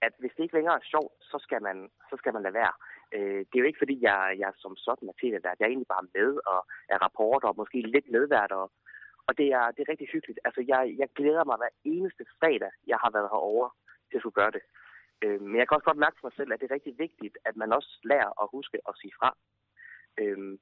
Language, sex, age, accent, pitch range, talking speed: Danish, male, 30-49, native, 105-165 Hz, 255 wpm